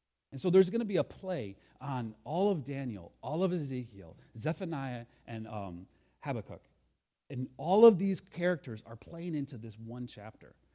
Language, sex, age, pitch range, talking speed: English, male, 30-49, 110-155 Hz, 165 wpm